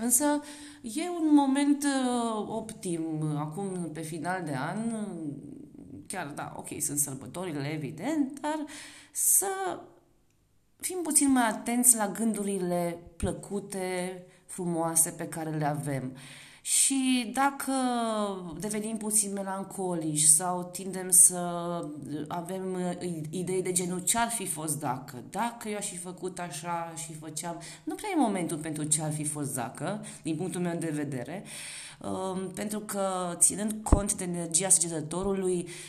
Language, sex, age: Romanian, female, 30-49